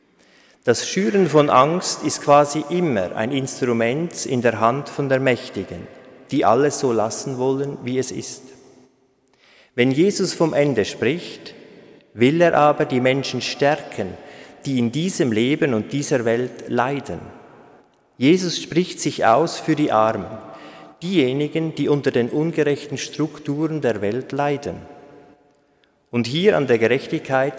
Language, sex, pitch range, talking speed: German, male, 115-145 Hz, 135 wpm